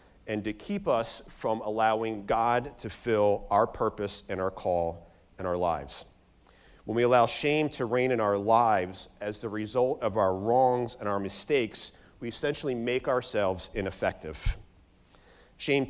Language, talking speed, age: English, 155 wpm, 40-59